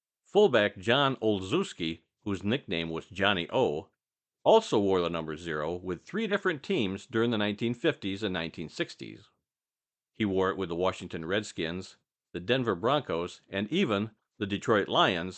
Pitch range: 85-115 Hz